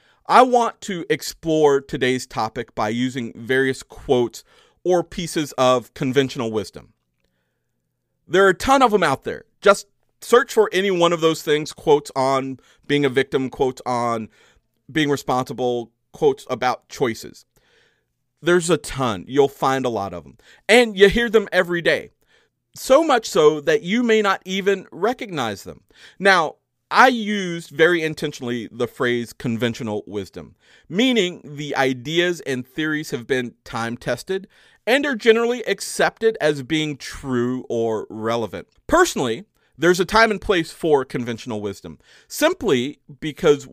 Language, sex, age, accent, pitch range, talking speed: English, male, 40-59, American, 125-195 Hz, 145 wpm